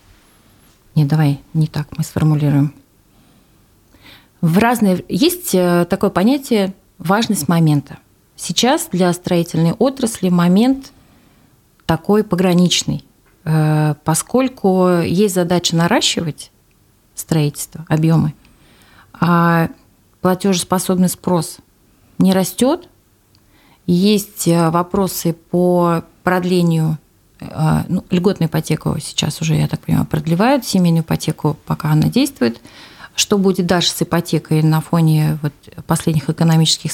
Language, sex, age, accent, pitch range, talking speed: Russian, female, 30-49, native, 160-195 Hz, 95 wpm